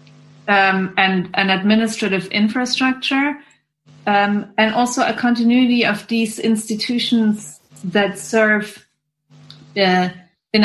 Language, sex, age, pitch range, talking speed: English, female, 30-49, 175-220 Hz, 90 wpm